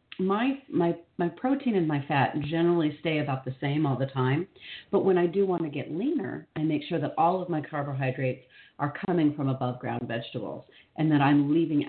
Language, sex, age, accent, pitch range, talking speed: English, female, 40-59, American, 135-170 Hz, 205 wpm